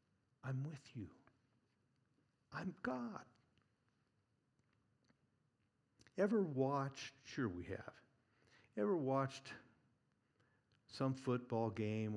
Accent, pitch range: American, 110-130 Hz